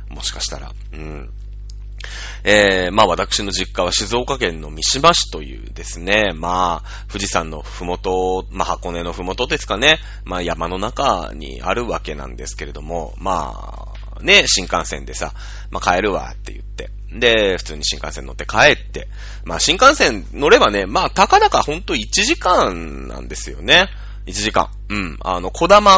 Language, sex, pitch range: Japanese, male, 90-120 Hz